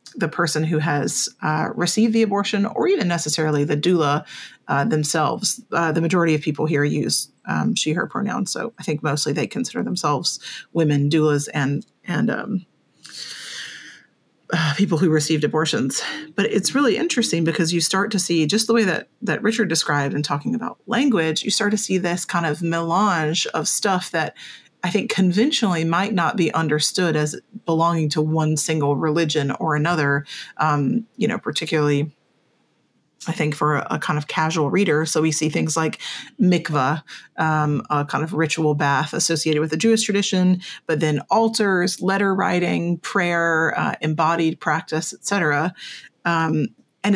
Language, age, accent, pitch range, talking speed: English, 30-49, American, 155-200 Hz, 170 wpm